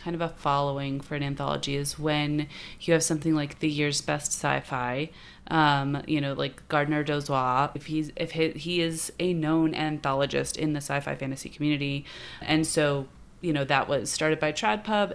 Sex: female